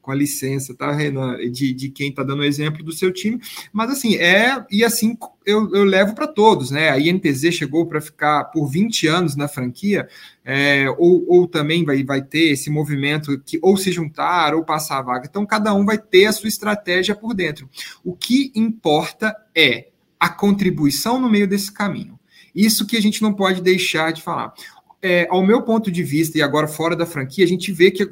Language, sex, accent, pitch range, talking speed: Portuguese, male, Brazilian, 155-205 Hz, 205 wpm